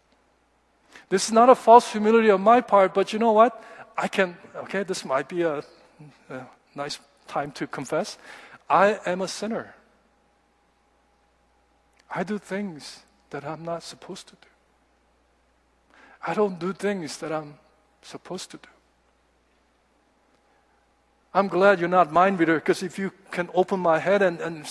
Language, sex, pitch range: Korean, male, 180-225 Hz